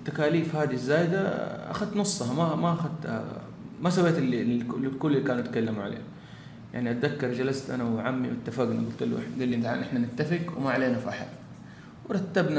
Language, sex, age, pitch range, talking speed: Arabic, male, 30-49, 125-155 Hz, 155 wpm